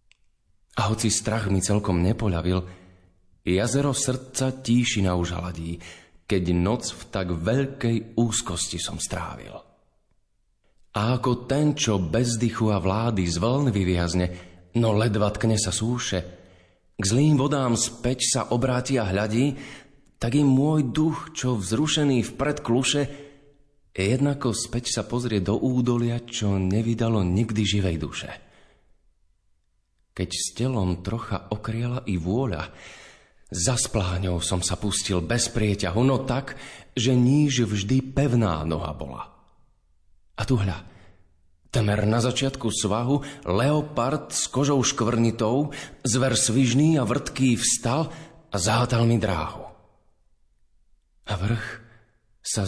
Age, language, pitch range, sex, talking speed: 30-49, Slovak, 95-130 Hz, male, 115 wpm